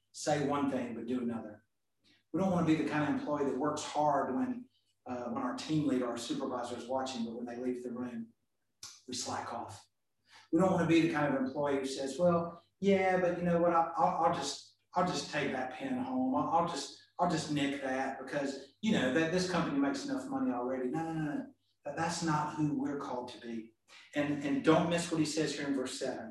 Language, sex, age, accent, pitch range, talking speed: English, male, 40-59, American, 125-170 Hz, 235 wpm